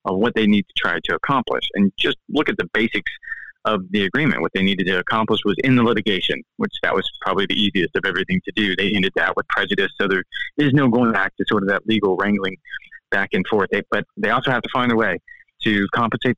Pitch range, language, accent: 105-135 Hz, English, American